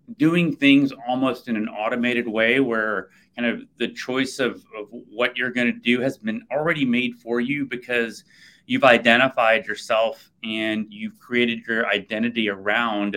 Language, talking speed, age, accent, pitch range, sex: English, 160 wpm, 30-49, American, 110-135 Hz, male